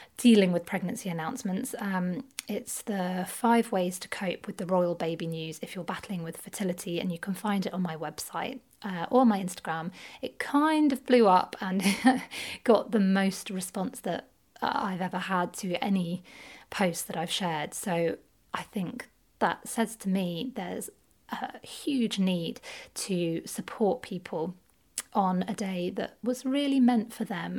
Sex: female